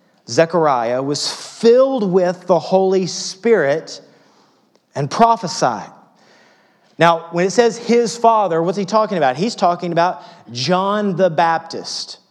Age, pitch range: 30-49, 155-195 Hz